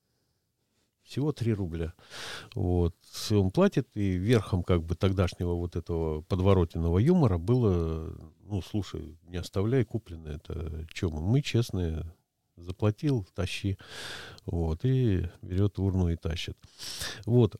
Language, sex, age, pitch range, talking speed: Russian, male, 50-69, 90-120 Hz, 120 wpm